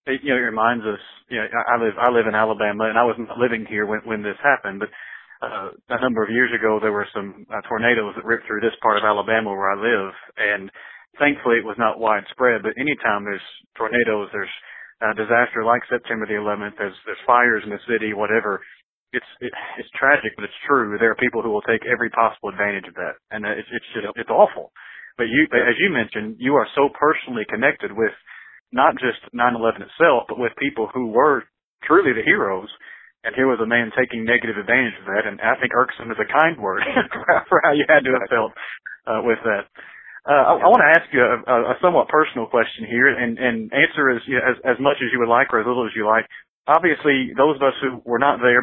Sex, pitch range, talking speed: male, 110-125 Hz, 225 wpm